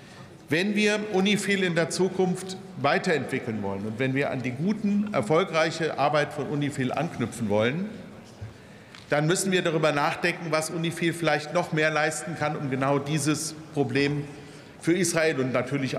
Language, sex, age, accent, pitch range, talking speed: German, male, 50-69, German, 120-155 Hz, 150 wpm